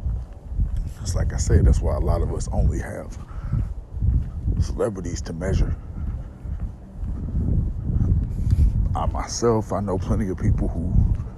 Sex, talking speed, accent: male, 115 wpm, American